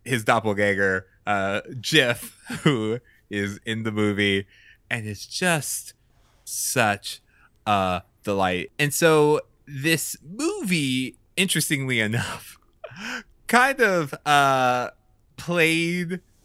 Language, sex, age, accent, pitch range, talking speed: English, male, 20-39, American, 105-155 Hz, 90 wpm